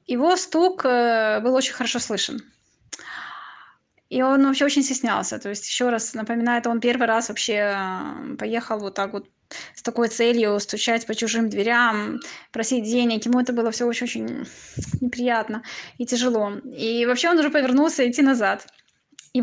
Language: Russian